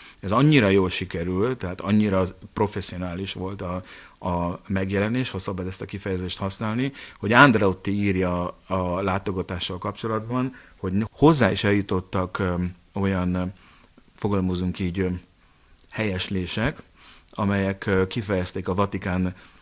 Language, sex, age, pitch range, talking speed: Hungarian, male, 30-49, 90-100 Hz, 105 wpm